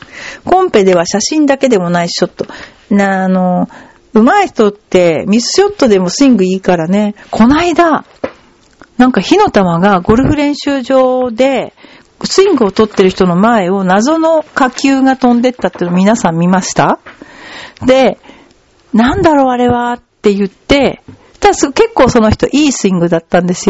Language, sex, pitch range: Japanese, female, 190-265 Hz